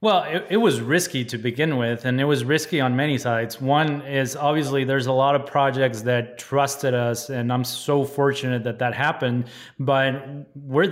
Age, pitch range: 30-49, 130-150 Hz